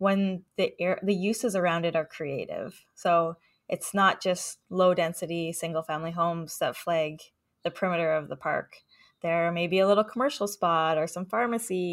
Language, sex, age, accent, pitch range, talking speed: English, female, 10-29, American, 165-200 Hz, 165 wpm